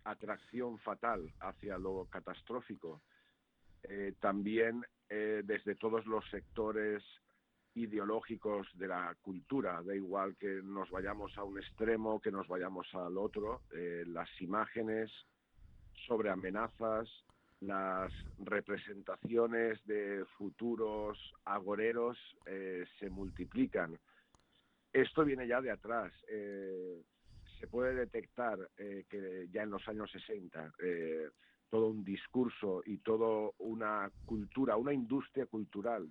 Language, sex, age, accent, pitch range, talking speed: Spanish, male, 50-69, Spanish, 95-115 Hz, 115 wpm